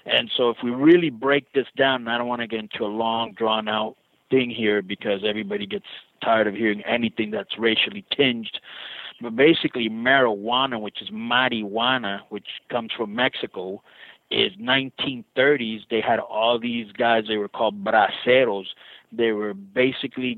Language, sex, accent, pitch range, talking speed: English, male, American, 110-130 Hz, 160 wpm